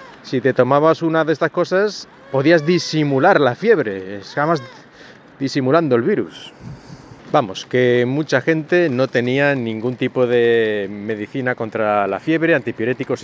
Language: Spanish